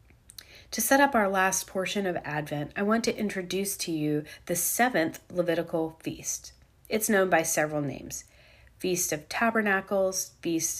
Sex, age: female, 30-49